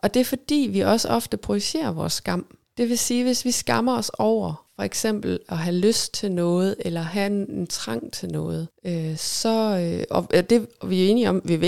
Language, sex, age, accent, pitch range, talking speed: Danish, female, 30-49, native, 170-215 Hz, 230 wpm